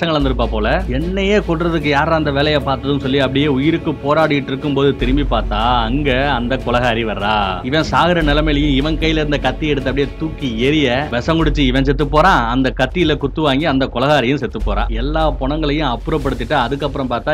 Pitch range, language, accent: 130-150 Hz, Tamil, native